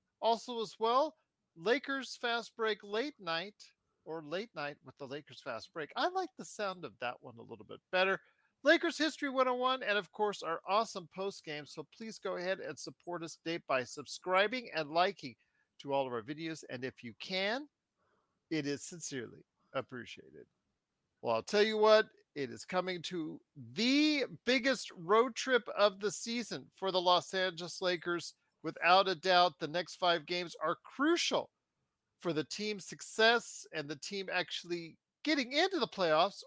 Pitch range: 170-240 Hz